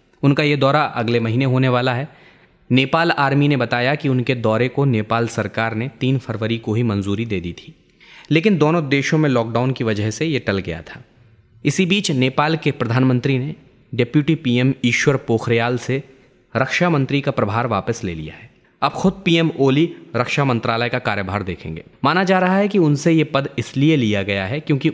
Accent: native